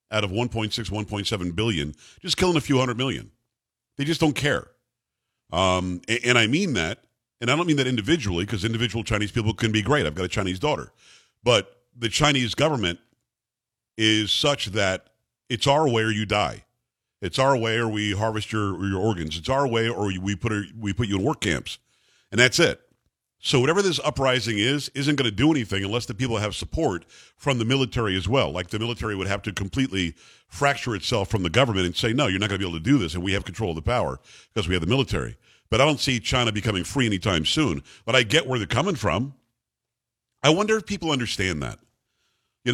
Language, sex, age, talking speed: English, male, 50-69, 220 wpm